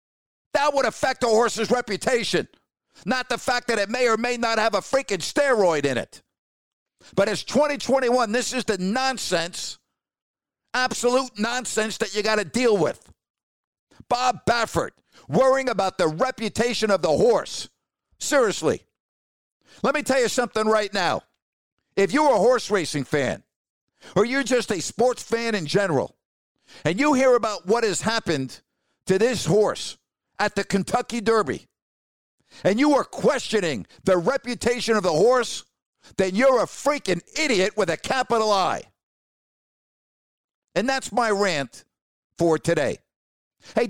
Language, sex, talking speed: English, male, 145 wpm